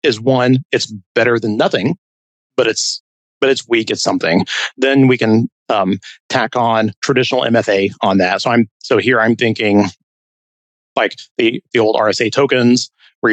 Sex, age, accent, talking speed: male, 30-49, American, 160 wpm